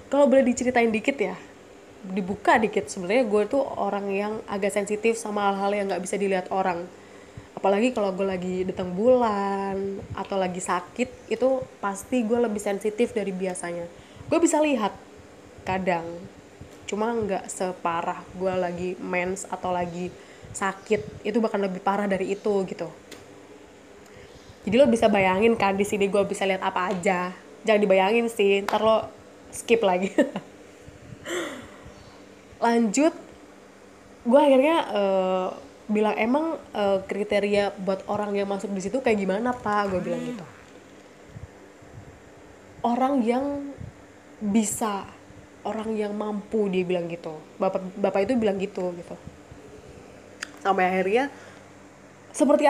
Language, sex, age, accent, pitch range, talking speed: Indonesian, female, 20-39, native, 185-230 Hz, 130 wpm